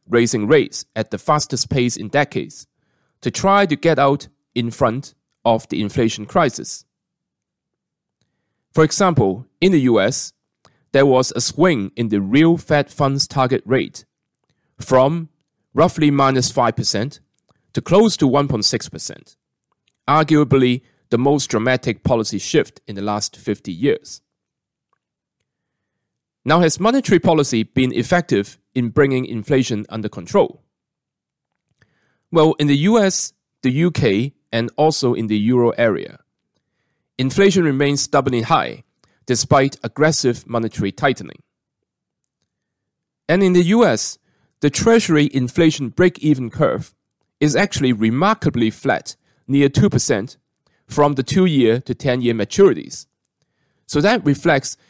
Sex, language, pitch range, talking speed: male, English, 120-155 Hz, 120 wpm